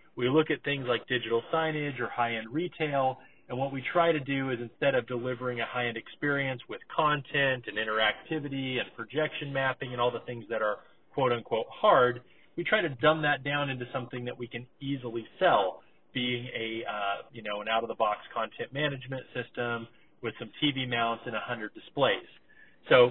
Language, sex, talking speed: English, male, 180 wpm